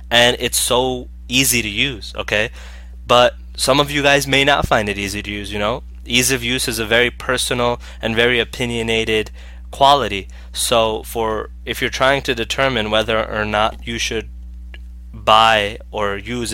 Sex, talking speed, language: male, 170 wpm, English